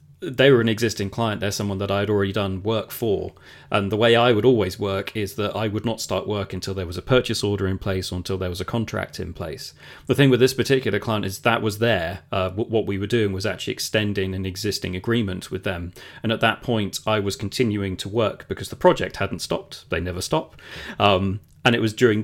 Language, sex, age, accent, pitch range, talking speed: English, male, 30-49, British, 100-120 Hz, 235 wpm